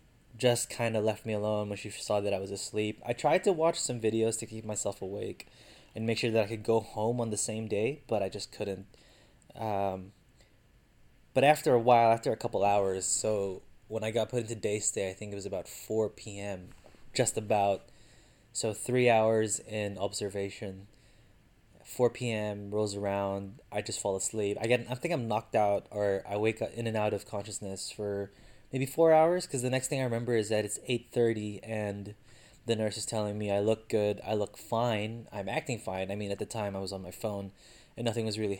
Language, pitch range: English, 100-115 Hz